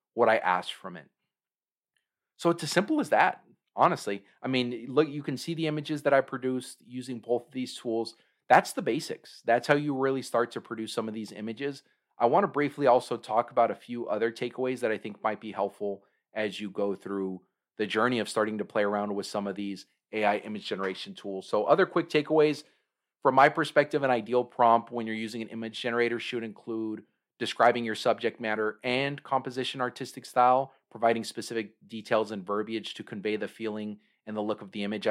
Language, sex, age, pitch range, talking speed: English, male, 40-59, 105-125 Hz, 205 wpm